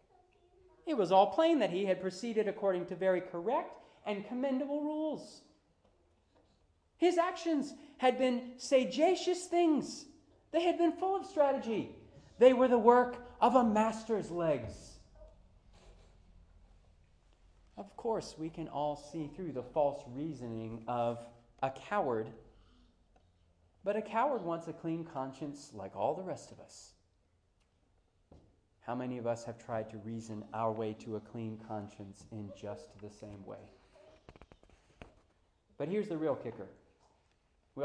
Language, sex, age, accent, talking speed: English, male, 40-59, American, 135 wpm